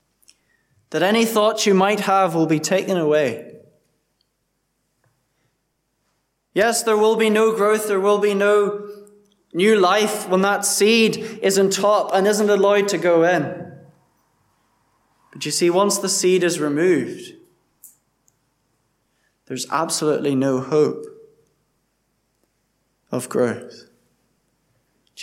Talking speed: 115 wpm